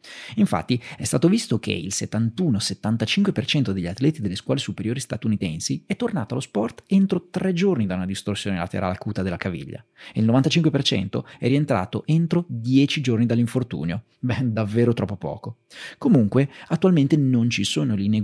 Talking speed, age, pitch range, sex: 150 wpm, 30-49, 105-155 Hz, male